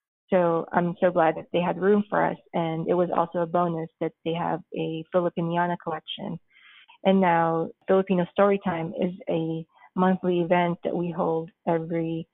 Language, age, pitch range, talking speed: English, 20-39, 170-190 Hz, 165 wpm